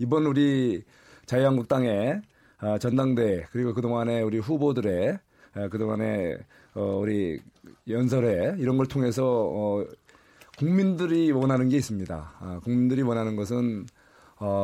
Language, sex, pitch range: Korean, male, 105-135 Hz